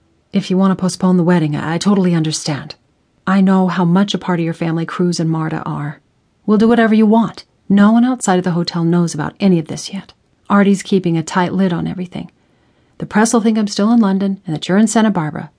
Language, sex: English, female